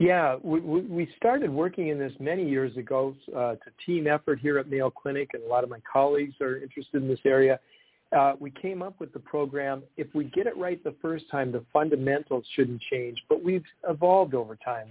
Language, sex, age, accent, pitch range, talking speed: English, male, 50-69, American, 125-150 Hz, 215 wpm